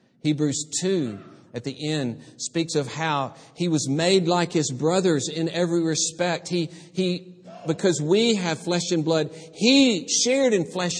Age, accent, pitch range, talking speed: 50-69, American, 155-195 Hz, 160 wpm